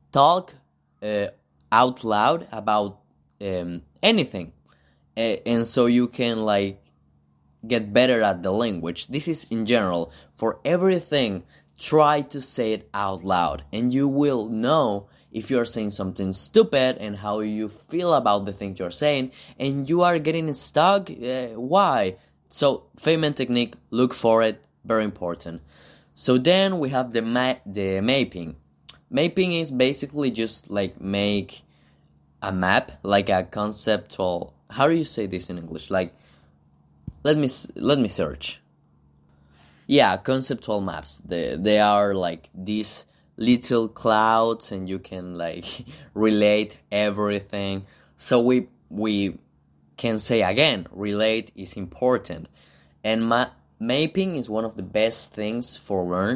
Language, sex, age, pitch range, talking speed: Spanish, male, 20-39, 85-125 Hz, 140 wpm